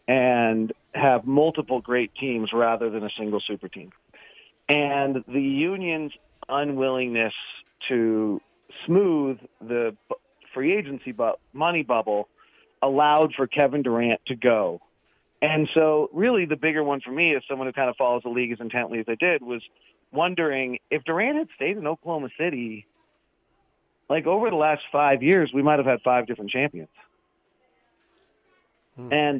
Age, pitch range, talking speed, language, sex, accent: 40-59, 120-155 Hz, 145 wpm, English, male, American